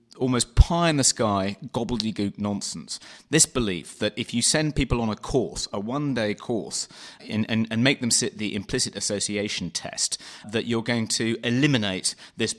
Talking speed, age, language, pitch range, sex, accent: 155 wpm, 30-49, English, 95-125 Hz, male, British